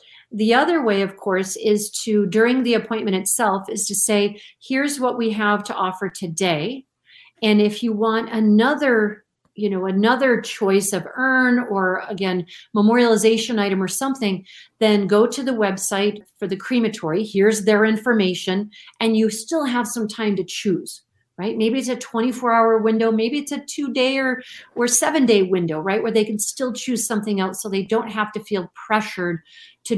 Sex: female